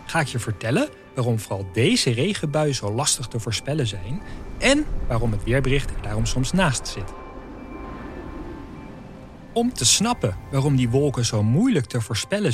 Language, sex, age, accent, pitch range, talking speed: Dutch, male, 40-59, Dutch, 110-175 Hz, 150 wpm